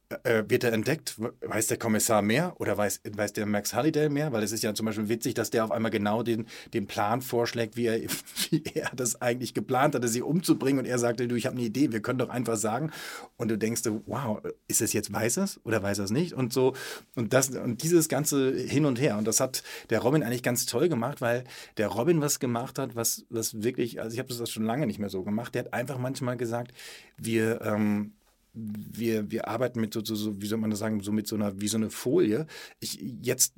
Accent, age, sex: German, 30-49, male